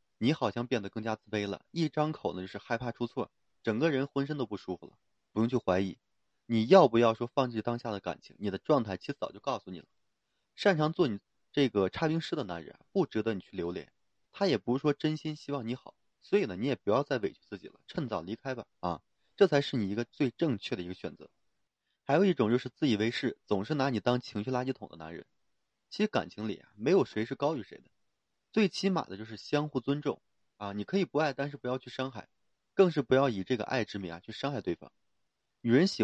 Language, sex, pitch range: Chinese, male, 105-140 Hz